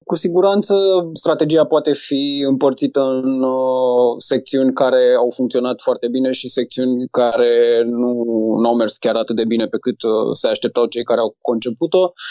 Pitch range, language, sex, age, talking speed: 125-145 Hz, Romanian, male, 20-39, 165 wpm